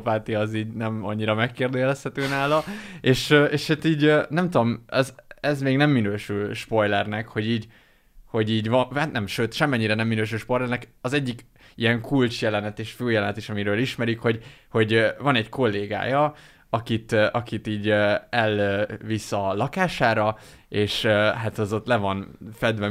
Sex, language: male, Hungarian